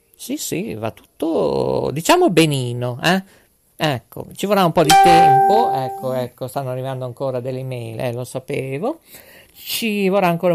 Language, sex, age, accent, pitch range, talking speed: Italian, male, 50-69, native, 125-170 Hz, 155 wpm